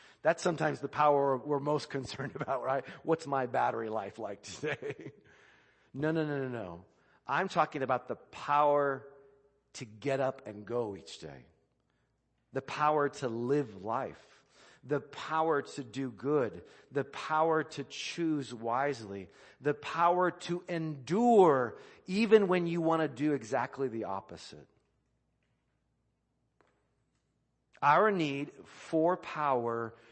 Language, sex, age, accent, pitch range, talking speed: English, male, 50-69, American, 115-150 Hz, 130 wpm